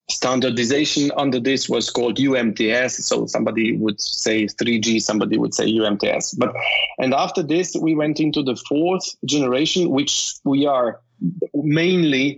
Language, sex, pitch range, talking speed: English, male, 115-145 Hz, 140 wpm